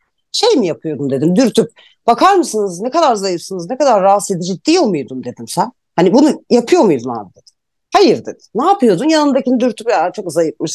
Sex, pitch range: female, 205-275 Hz